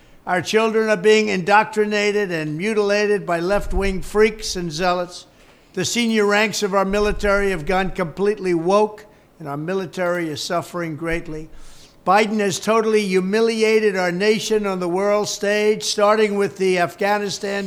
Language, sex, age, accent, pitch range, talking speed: English, male, 60-79, American, 165-210 Hz, 145 wpm